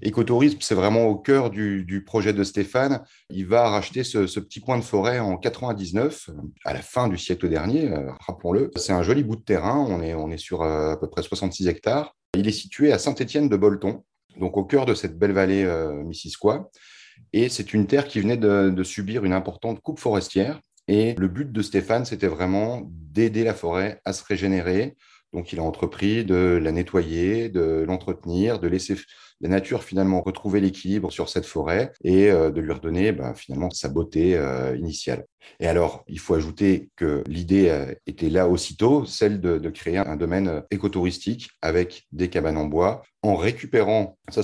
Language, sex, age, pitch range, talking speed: French, male, 30-49, 90-105 Hz, 190 wpm